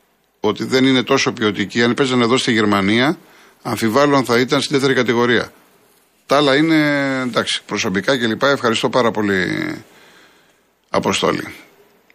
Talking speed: 125 wpm